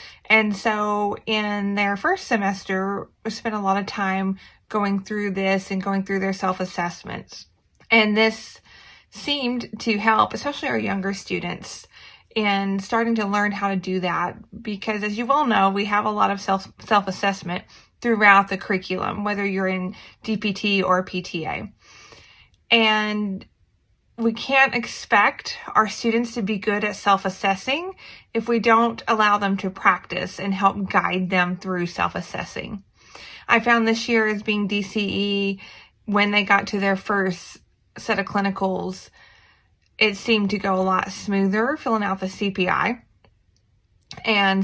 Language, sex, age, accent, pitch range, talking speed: English, female, 30-49, American, 190-215 Hz, 150 wpm